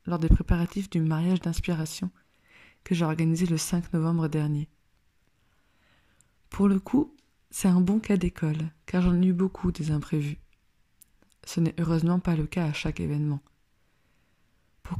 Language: French